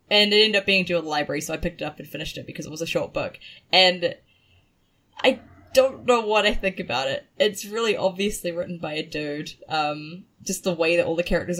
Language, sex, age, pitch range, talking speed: English, female, 10-29, 160-210 Hz, 245 wpm